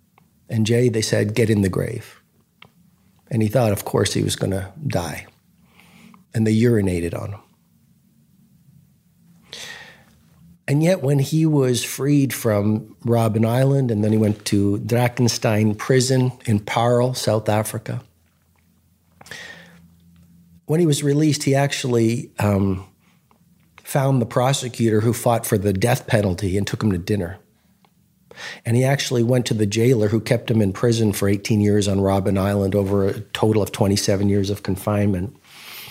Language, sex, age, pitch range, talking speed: English, male, 50-69, 100-120 Hz, 150 wpm